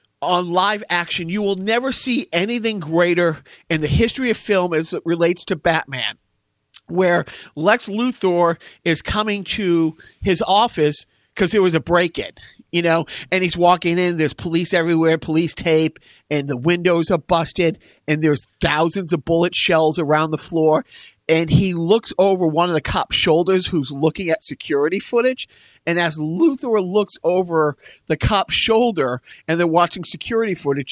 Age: 40-59